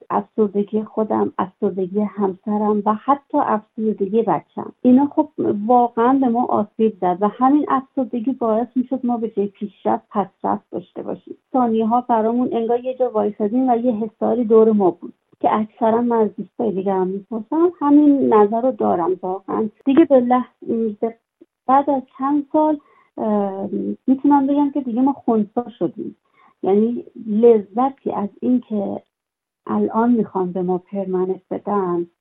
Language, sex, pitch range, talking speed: Persian, female, 200-250 Hz, 140 wpm